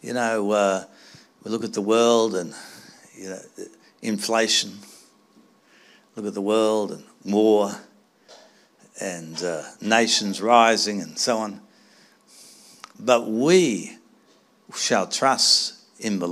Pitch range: 105-125 Hz